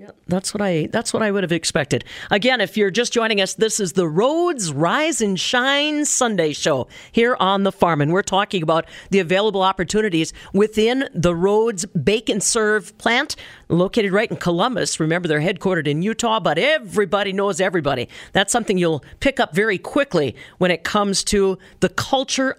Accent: American